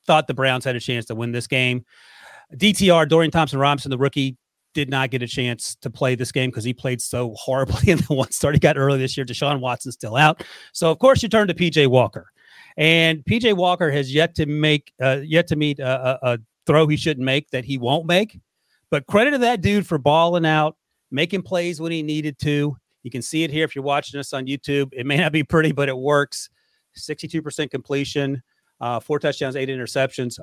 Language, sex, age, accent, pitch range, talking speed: English, male, 30-49, American, 135-180 Hz, 225 wpm